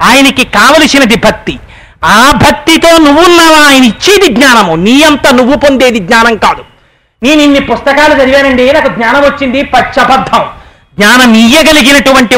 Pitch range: 235-290 Hz